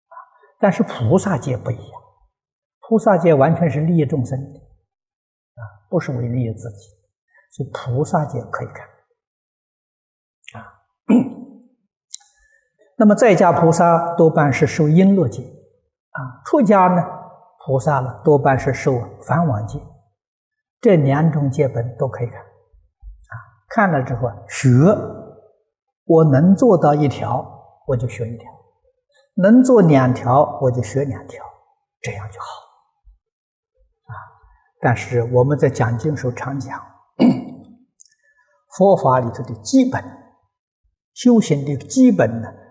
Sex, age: male, 50-69